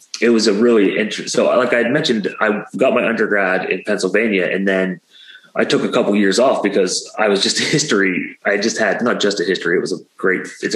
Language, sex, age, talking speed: Portuguese, male, 30-49, 235 wpm